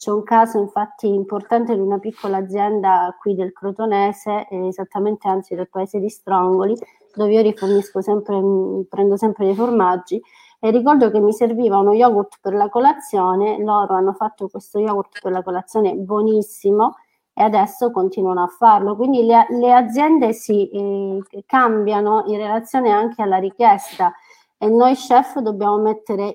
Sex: female